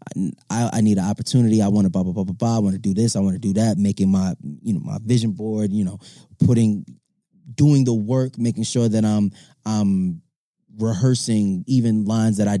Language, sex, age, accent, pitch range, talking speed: English, male, 20-39, American, 105-135 Hz, 220 wpm